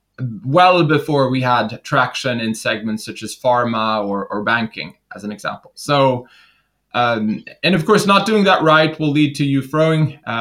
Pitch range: 125-160 Hz